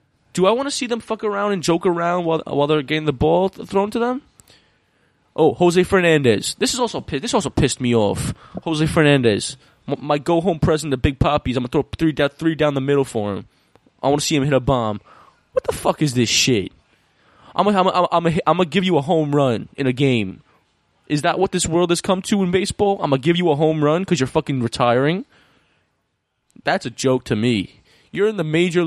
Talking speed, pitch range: 220 wpm, 130-180 Hz